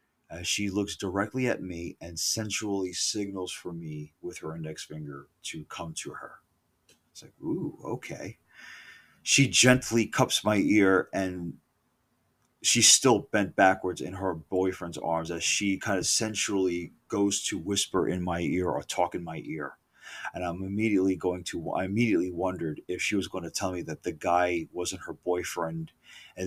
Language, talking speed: English, 170 wpm